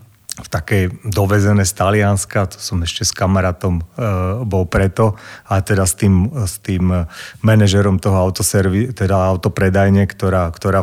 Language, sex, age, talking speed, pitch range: Slovak, male, 30-49, 145 wpm, 95-110 Hz